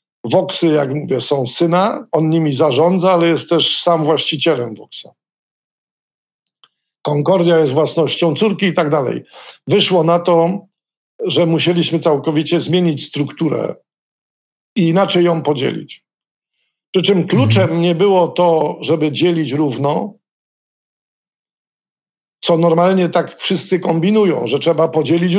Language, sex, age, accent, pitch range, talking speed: Polish, male, 50-69, native, 155-185 Hz, 120 wpm